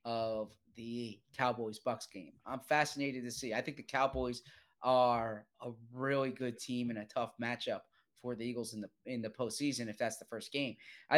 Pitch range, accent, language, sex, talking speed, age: 120-140 Hz, American, English, male, 195 wpm, 30-49